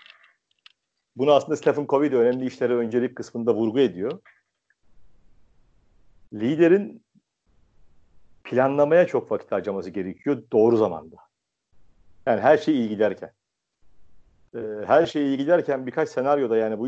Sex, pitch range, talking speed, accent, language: male, 115-165 Hz, 115 wpm, native, Turkish